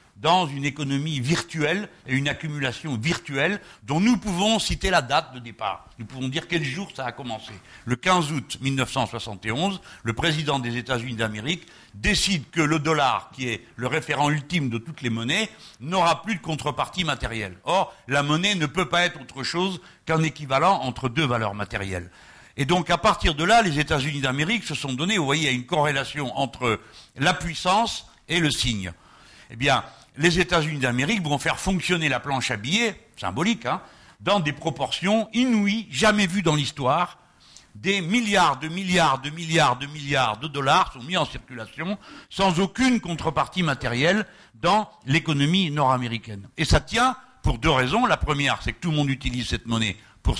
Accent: French